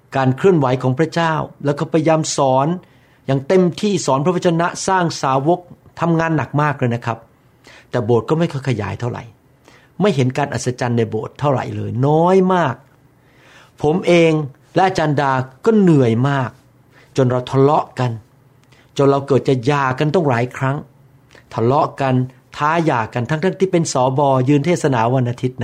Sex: male